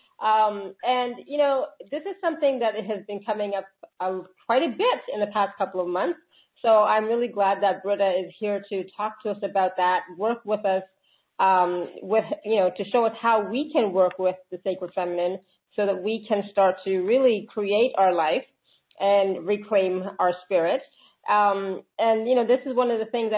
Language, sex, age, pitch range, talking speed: English, female, 40-59, 190-235 Hz, 200 wpm